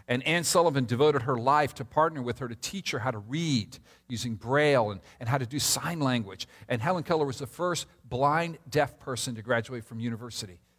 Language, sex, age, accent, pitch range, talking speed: English, male, 50-69, American, 120-165 Hz, 210 wpm